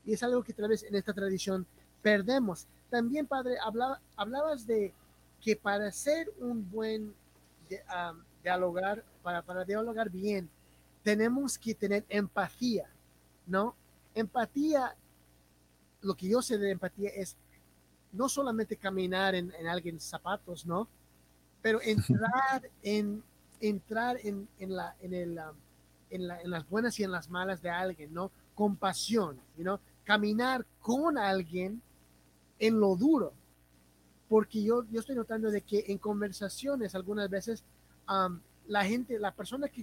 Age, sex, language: 30-49, male, English